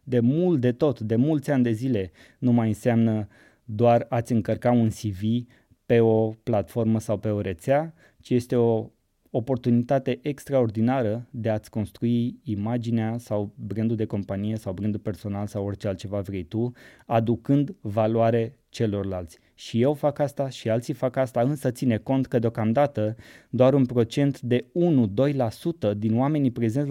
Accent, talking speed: native, 155 wpm